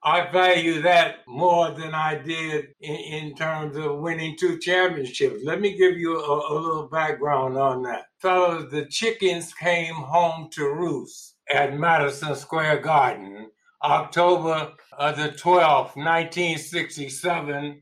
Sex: male